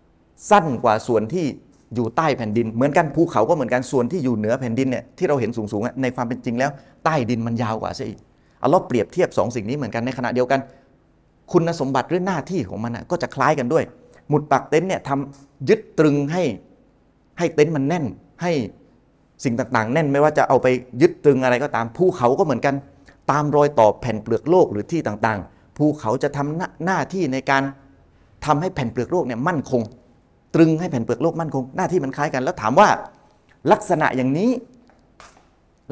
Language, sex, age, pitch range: Thai, male, 30-49, 115-165 Hz